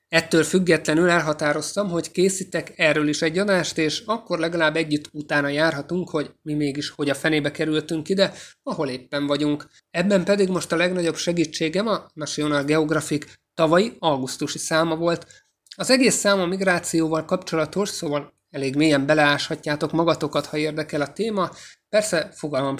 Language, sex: Hungarian, male